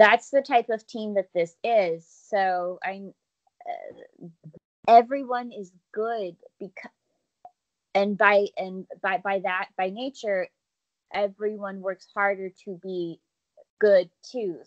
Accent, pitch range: American, 180-210 Hz